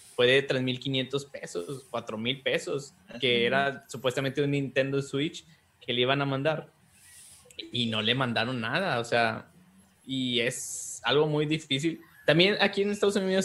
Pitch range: 120-145 Hz